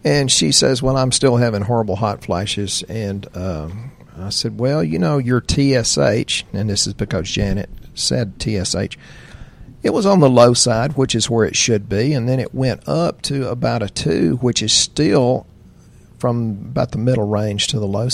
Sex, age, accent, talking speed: male, 50-69, American, 190 wpm